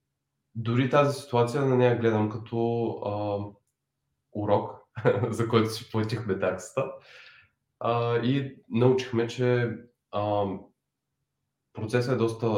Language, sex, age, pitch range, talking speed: Bulgarian, male, 20-39, 100-125 Hz, 105 wpm